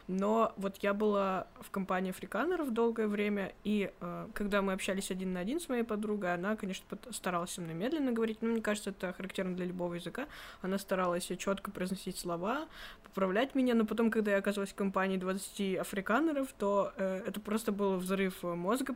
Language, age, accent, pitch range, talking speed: Russian, 20-39, native, 185-215 Hz, 180 wpm